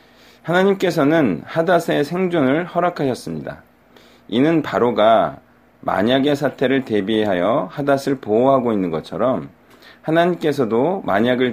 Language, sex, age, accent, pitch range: Korean, male, 40-59, native, 125-175 Hz